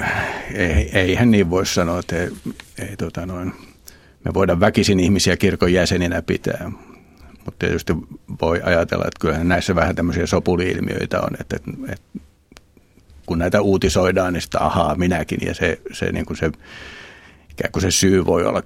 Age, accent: 60-79, native